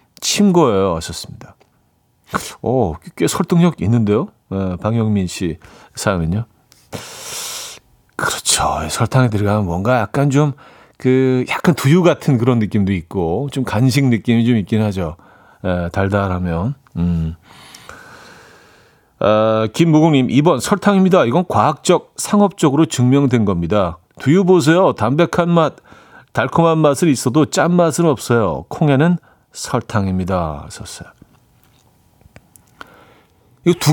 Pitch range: 105-150 Hz